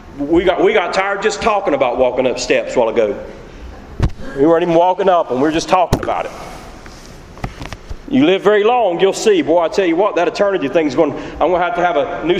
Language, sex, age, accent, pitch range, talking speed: English, male, 40-59, American, 145-185 Hz, 240 wpm